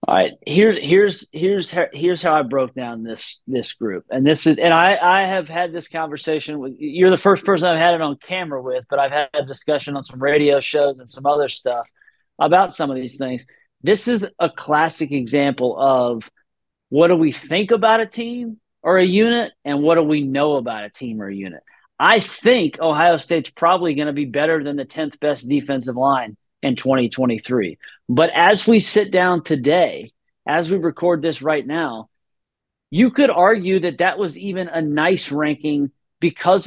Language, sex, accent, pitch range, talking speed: English, male, American, 140-180 Hz, 195 wpm